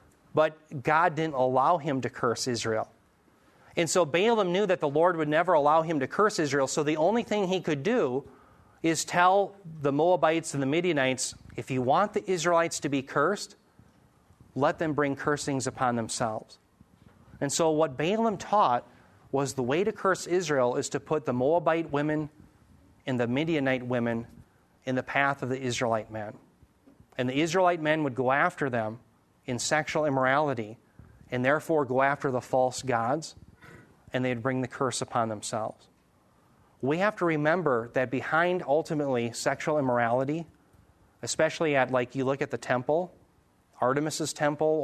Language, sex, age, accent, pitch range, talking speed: English, male, 40-59, American, 125-160 Hz, 165 wpm